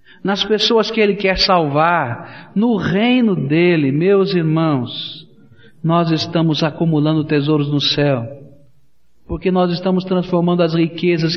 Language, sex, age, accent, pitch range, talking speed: Portuguese, male, 50-69, Brazilian, 145-195 Hz, 120 wpm